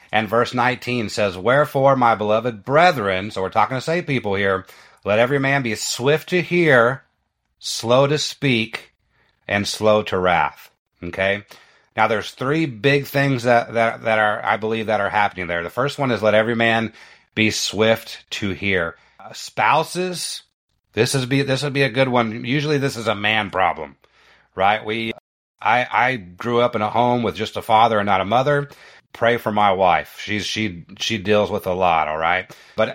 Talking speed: 190 wpm